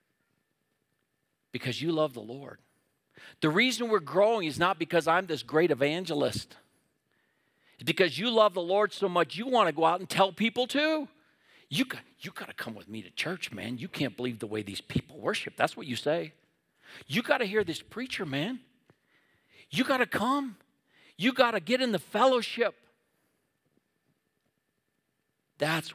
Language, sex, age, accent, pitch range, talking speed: English, male, 50-69, American, 135-210 Hz, 165 wpm